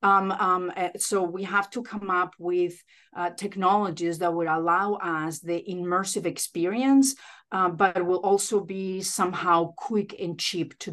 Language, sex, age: English, female, 40-59